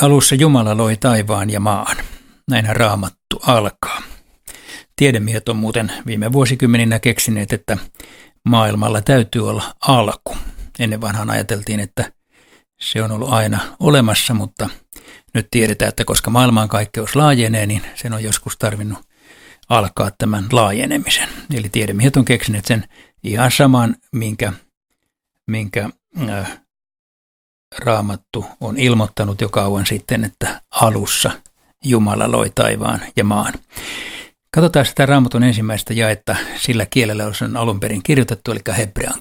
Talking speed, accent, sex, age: 125 wpm, native, male, 60-79